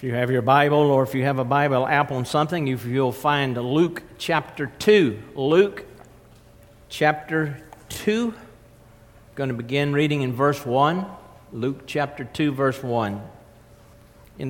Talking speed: 145 wpm